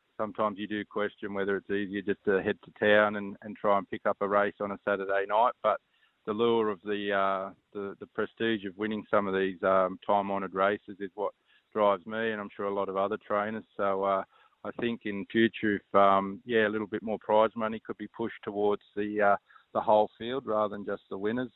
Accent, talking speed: Australian, 230 wpm